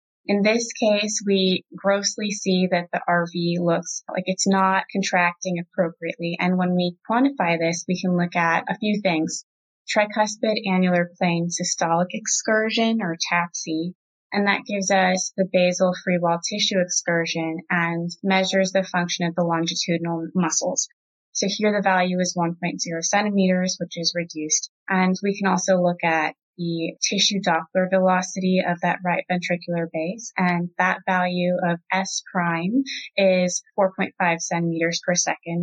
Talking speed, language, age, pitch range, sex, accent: 150 wpm, English, 20-39, 170-195 Hz, female, American